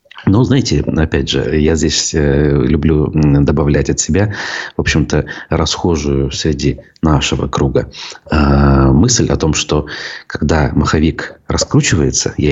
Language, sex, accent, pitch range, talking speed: Russian, male, native, 75-85 Hz, 115 wpm